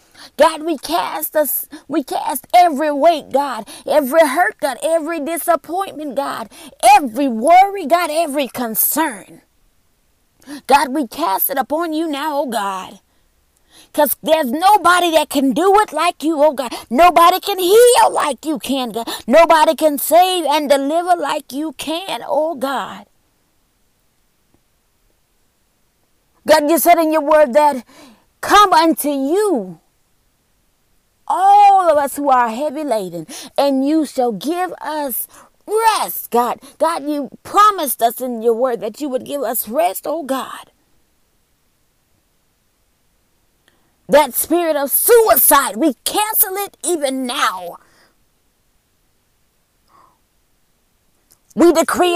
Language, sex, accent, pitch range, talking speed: English, female, American, 280-340 Hz, 125 wpm